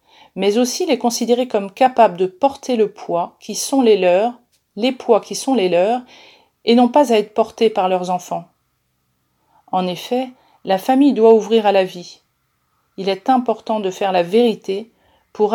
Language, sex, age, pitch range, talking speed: French, female, 40-59, 185-230 Hz, 180 wpm